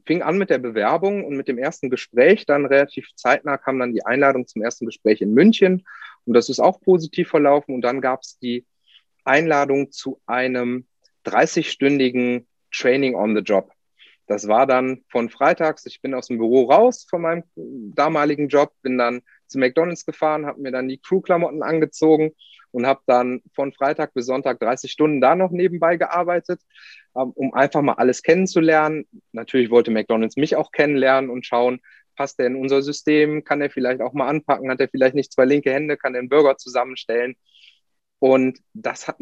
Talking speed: 180 wpm